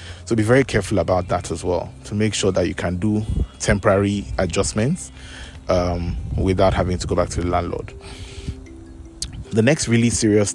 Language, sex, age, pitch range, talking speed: English, male, 30-49, 90-110 Hz, 165 wpm